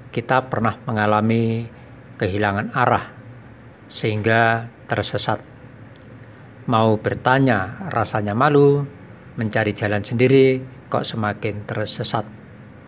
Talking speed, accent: 80 wpm, native